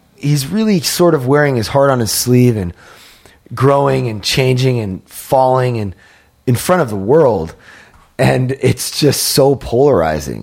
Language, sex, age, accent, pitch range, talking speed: English, male, 30-49, American, 95-130 Hz, 155 wpm